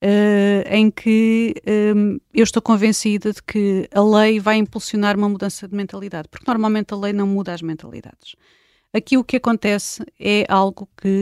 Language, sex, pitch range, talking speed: Portuguese, female, 185-220 Hz, 160 wpm